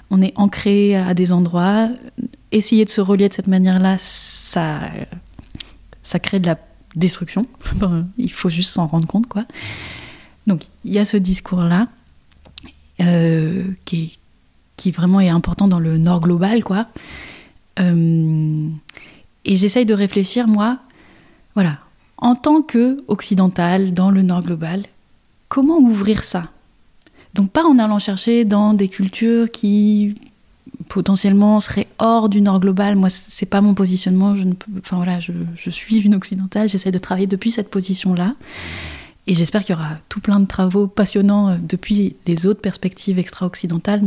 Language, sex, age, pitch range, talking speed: French, female, 20-39, 180-210 Hz, 155 wpm